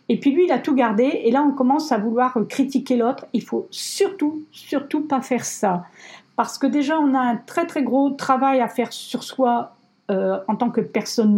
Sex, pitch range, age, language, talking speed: female, 230-280 Hz, 50-69, French, 220 wpm